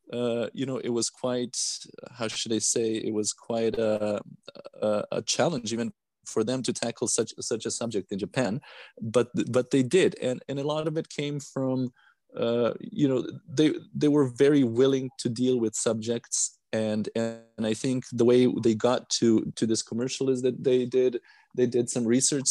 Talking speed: 190 wpm